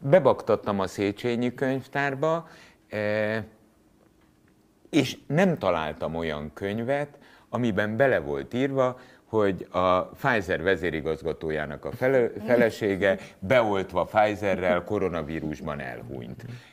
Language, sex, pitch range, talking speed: Hungarian, male, 90-130 Hz, 85 wpm